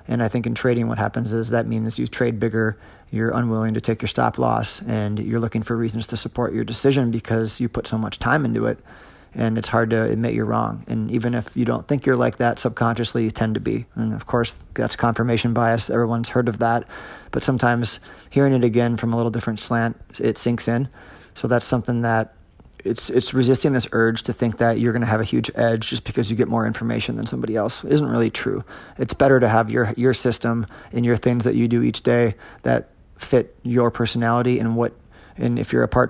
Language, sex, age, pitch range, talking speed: English, male, 20-39, 115-120 Hz, 235 wpm